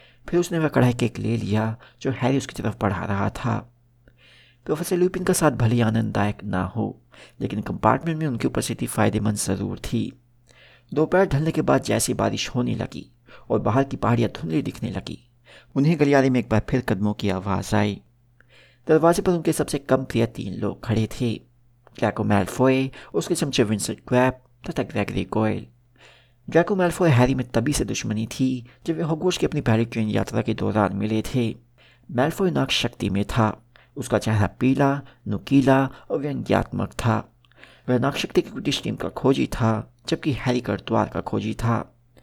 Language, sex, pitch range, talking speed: Hindi, male, 110-130 Hz, 175 wpm